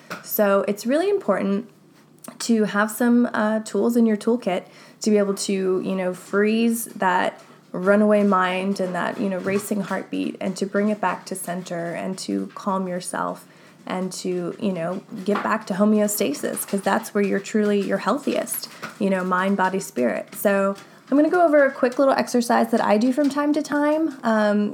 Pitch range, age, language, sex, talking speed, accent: 195-230 Hz, 20-39, English, female, 185 wpm, American